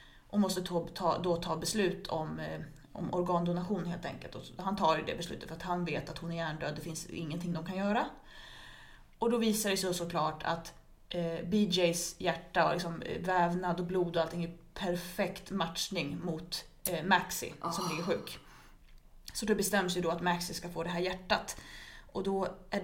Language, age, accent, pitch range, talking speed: Swedish, 20-39, native, 170-205 Hz, 180 wpm